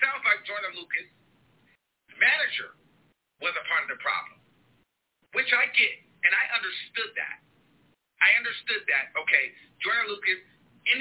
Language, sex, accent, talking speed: English, male, American, 135 wpm